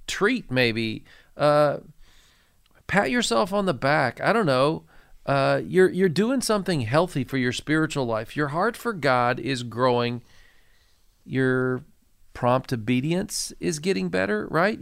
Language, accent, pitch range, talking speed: English, American, 120-165 Hz, 140 wpm